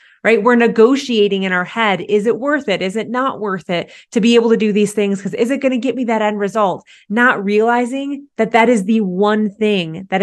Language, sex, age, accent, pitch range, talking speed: English, female, 30-49, American, 200-260 Hz, 240 wpm